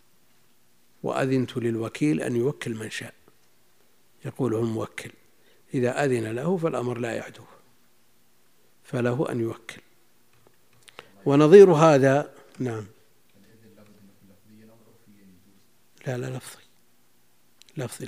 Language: Arabic